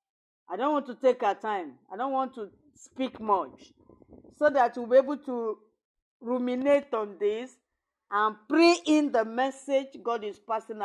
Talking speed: 165 wpm